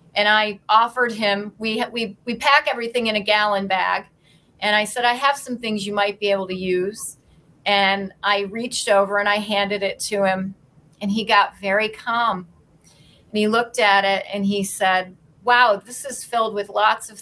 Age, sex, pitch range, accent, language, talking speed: 40-59, female, 185-210 Hz, American, English, 195 wpm